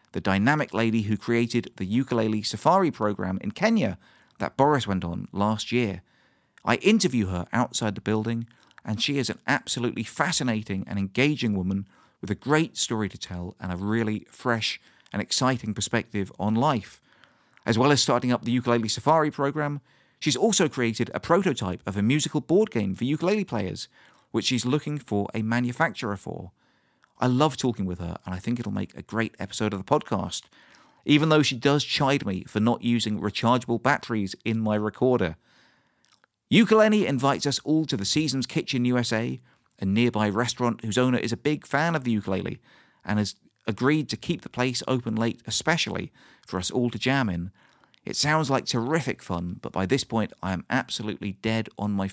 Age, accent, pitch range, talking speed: 40-59, British, 105-135 Hz, 180 wpm